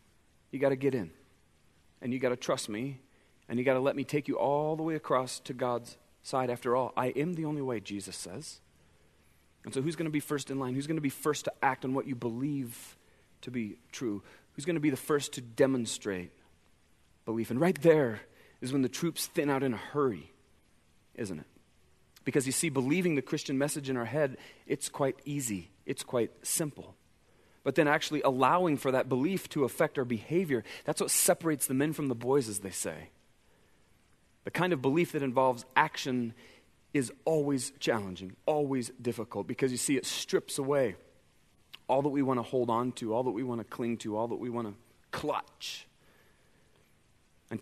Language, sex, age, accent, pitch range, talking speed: English, male, 40-59, American, 115-145 Hz, 195 wpm